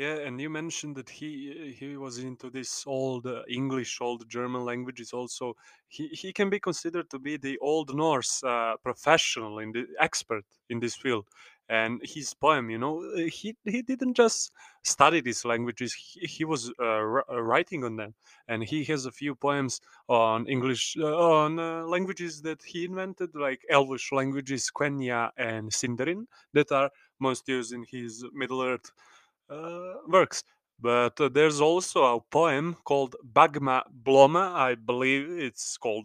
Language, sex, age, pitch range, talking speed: English, male, 20-39, 125-165 Hz, 165 wpm